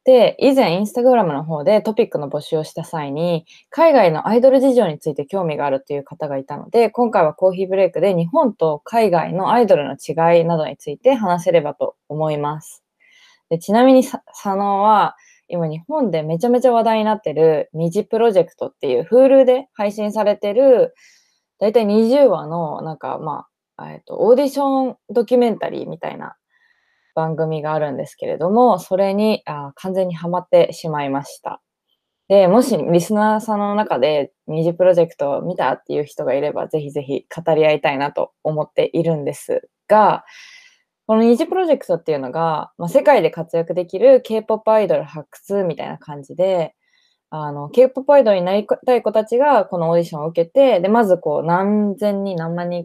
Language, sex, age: Japanese, female, 20-39